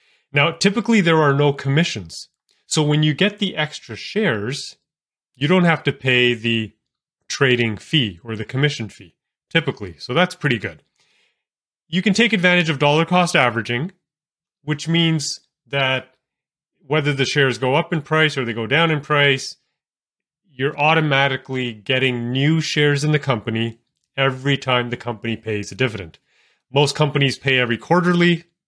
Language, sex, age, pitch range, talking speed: English, male, 30-49, 120-155 Hz, 155 wpm